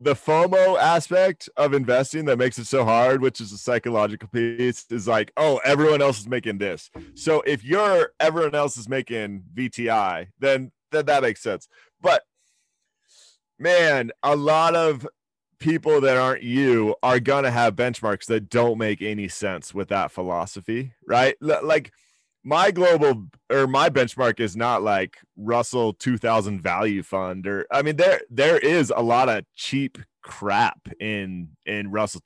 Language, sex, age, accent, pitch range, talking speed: English, male, 30-49, American, 110-140 Hz, 160 wpm